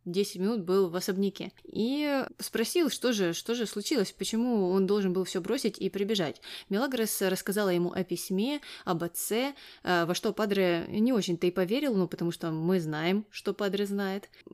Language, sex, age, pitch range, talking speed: Russian, female, 20-39, 180-225 Hz, 170 wpm